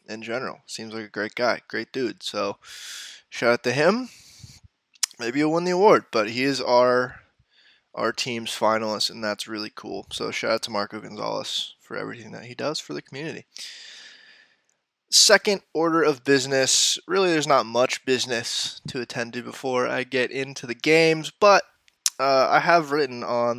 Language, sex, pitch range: English, male, 120-175 Hz